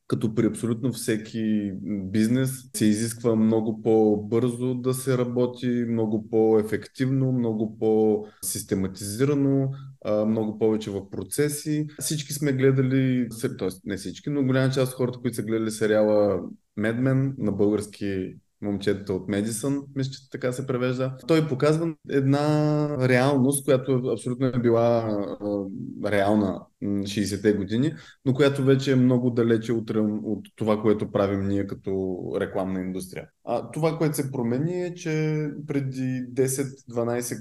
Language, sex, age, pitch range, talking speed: Bulgarian, male, 20-39, 105-135 Hz, 125 wpm